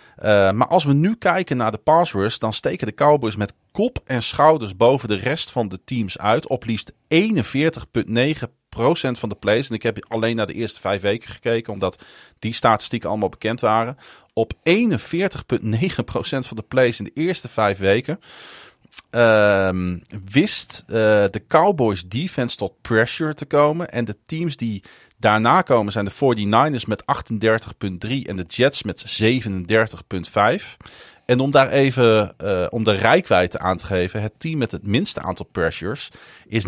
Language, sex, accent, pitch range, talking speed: Dutch, male, Dutch, 105-140 Hz, 165 wpm